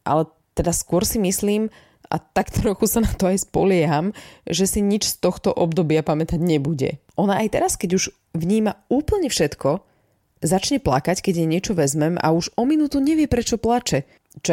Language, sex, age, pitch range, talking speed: Slovak, female, 20-39, 150-190 Hz, 180 wpm